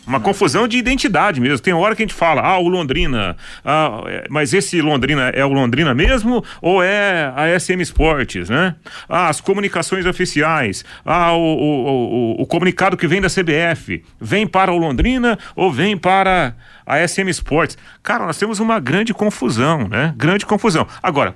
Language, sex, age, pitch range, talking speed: Portuguese, male, 40-59, 125-180 Hz, 175 wpm